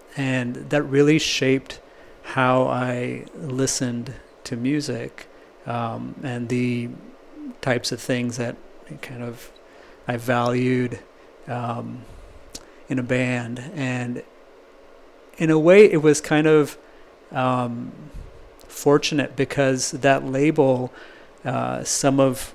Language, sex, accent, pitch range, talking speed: English, male, American, 125-140 Hz, 105 wpm